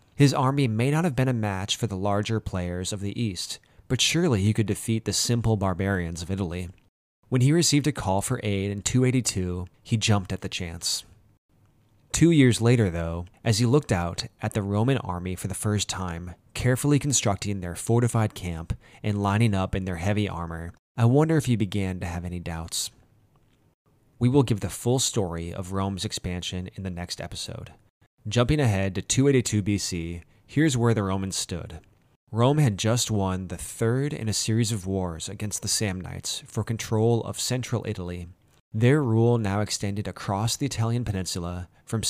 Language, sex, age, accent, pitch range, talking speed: English, male, 20-39, American, 95-120 Hz, 180 wpm